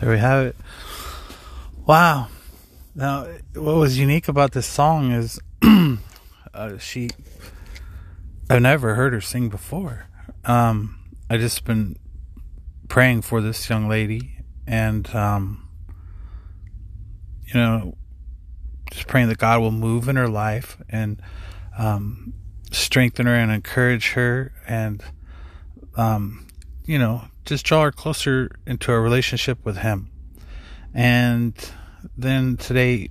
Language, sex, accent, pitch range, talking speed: English, male, American, 85-120 Hz, 120 wpm